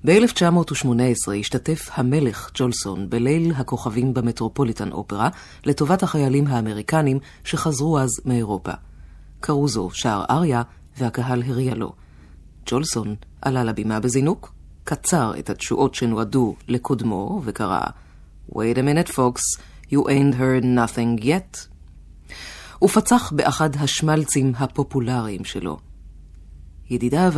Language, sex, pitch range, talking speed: Hebrew, female, 95-140 Hz, 90 wpm